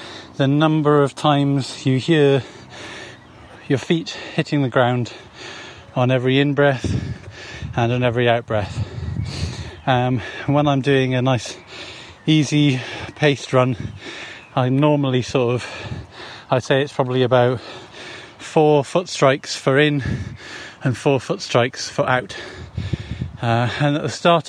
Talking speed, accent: 125 wpm, British